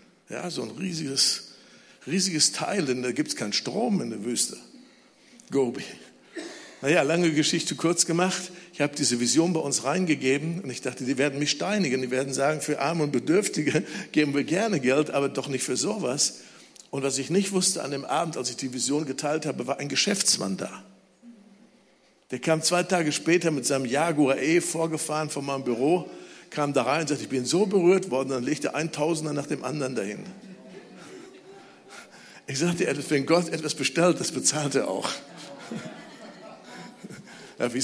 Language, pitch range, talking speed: German, 135-170 Hz, 180 wpm